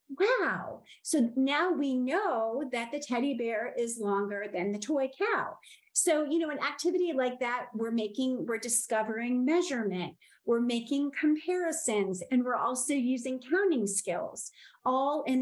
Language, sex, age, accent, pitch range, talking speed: English, female, 30-49, American, 225-285 Hz, 150 wpm